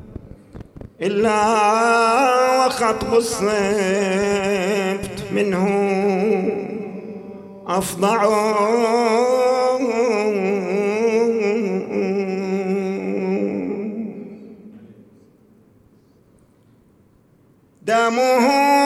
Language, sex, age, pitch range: English, male, 50-69, 220-280 Hz